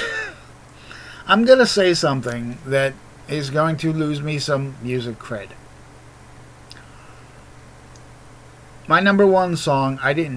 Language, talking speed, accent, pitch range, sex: English, 115 wpm, American, 125-160 Hz, male